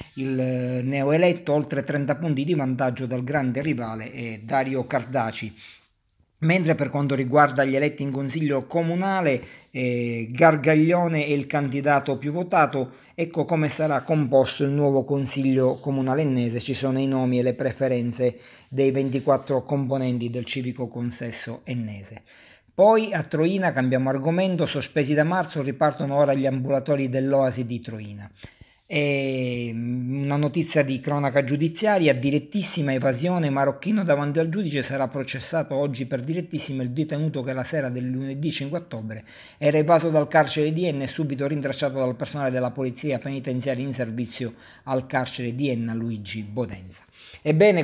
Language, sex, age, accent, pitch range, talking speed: Italian, male, 50-69, native, 125-150 Hz, 145 wpm